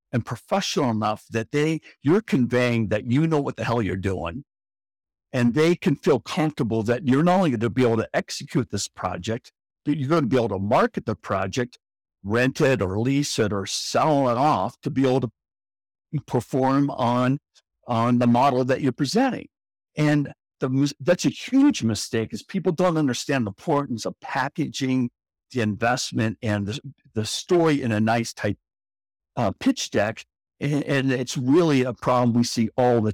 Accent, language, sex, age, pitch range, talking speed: American, English, male, 60-79, 110-145 Hz, 180 wpm